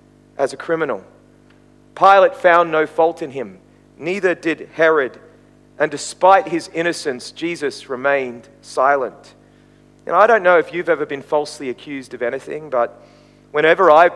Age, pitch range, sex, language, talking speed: 40-59, 145-205 Hz, male, English, 145 wpm